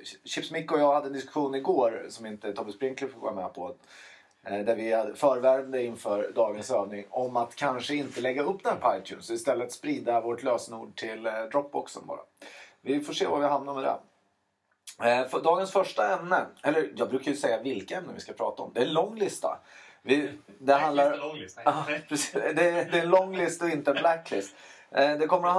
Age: 30-49